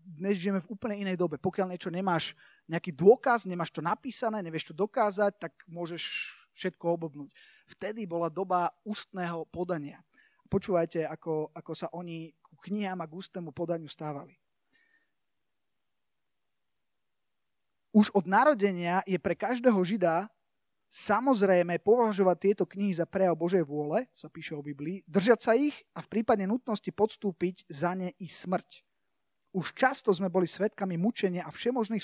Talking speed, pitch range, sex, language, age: 145 wpm, 165-200 Hz, male, Slovak, 20-39